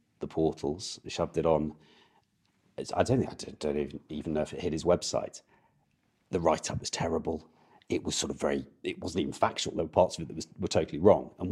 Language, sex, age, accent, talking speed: English, male, 40-59, British, 215 wpm